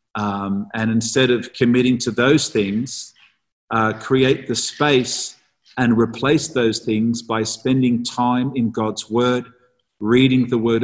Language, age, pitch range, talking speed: English, 50-69, 110-130 Hz, 140 wpm